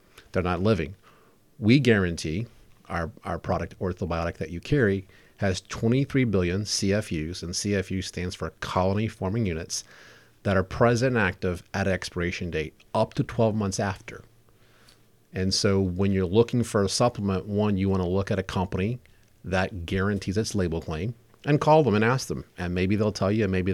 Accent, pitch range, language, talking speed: American, 95-110 Hz, English, 175 wpm